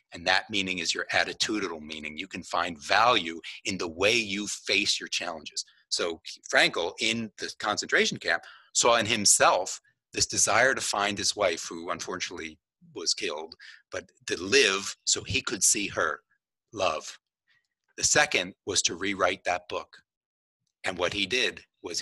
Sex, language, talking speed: male, English, 160 wpm